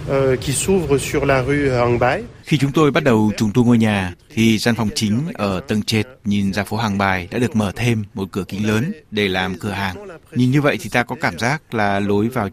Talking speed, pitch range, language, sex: 210 wpm, 100-125 Hz, Vietnamese, male